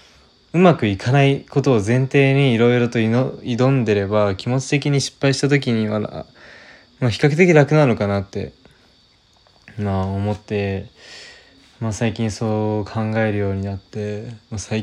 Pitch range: 100-125 Hz